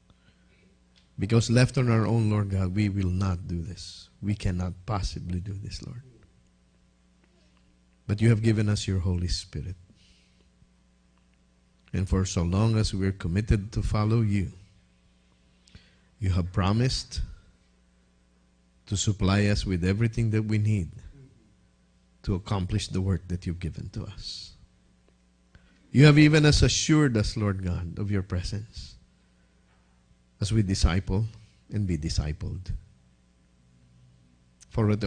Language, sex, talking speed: English, male, 130 wpm